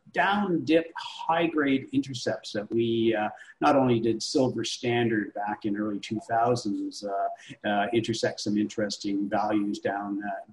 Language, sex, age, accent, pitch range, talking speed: English, male, 50-69, American, 105-130 Hz, 135 wpm